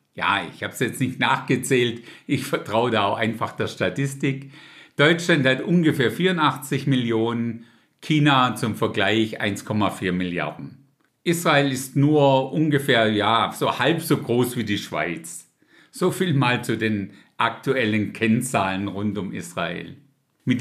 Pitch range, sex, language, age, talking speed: 105-145 Hz, male, German, 50-69, 135 wpm